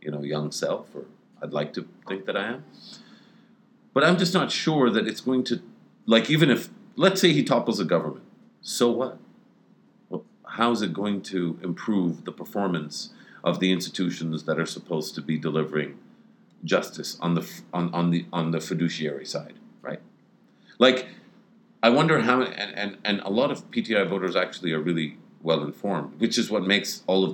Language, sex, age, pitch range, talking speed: English, male, 50-69, 80-120 Hz, 185 wpm